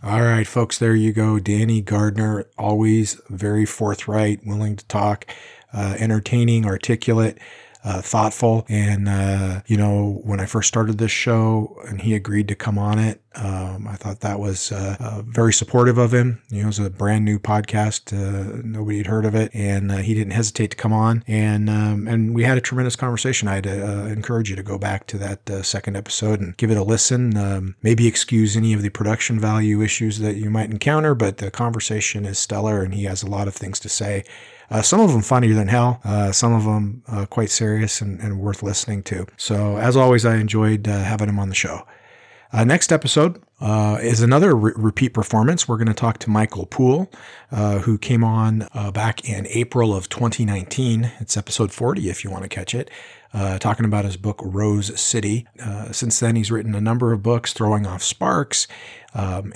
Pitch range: 105-115 Hz